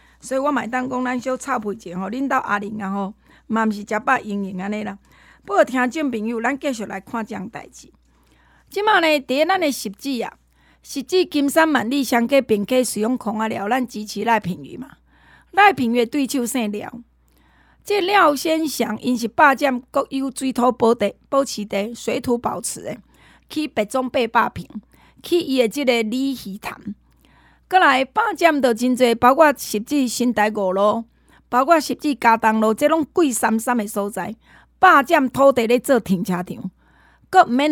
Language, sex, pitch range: Chinese, female, 220-290 Hz